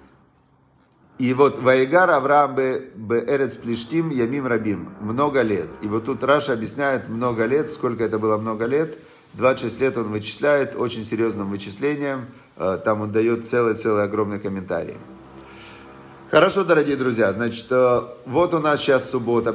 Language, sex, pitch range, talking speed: Russian, male, 110-140 Hz, 140 wpm